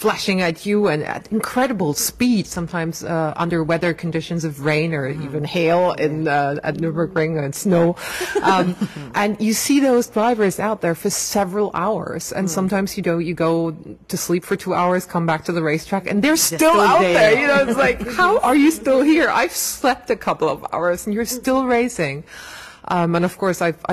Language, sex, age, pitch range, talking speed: English, female, 30-49, 160-195 Hz, 200 wpm